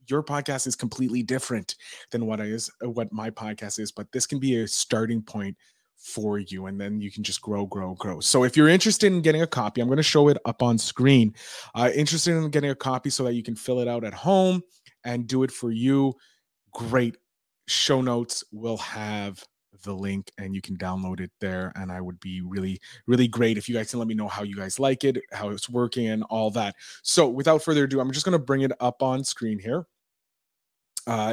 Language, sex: English, male